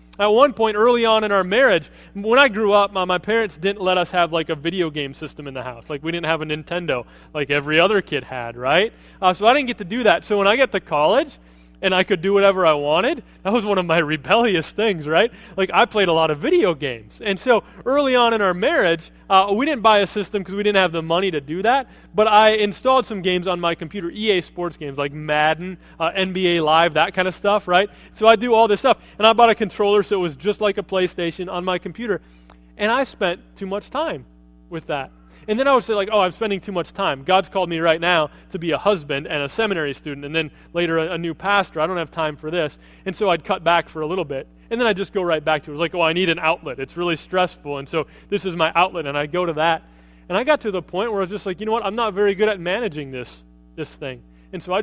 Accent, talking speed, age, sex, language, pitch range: American, 275 wpm, 30-49, male, English, 155-205 Hz